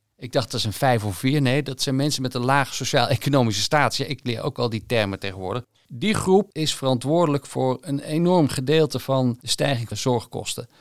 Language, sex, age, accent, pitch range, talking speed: Dutch, male, 50-69, Dutch, 115-140 Hz, 210 wpm